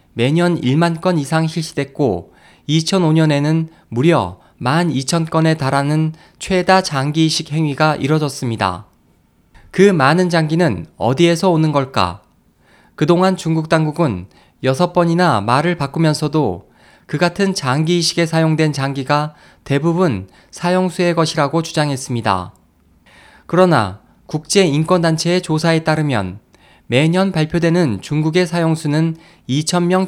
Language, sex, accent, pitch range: Korean, male, native, 130-170 Hz